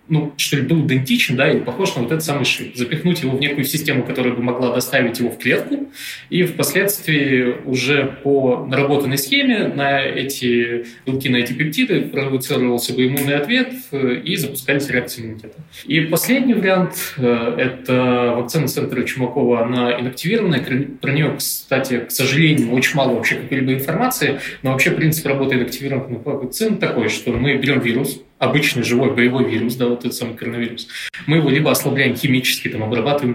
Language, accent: Russian, native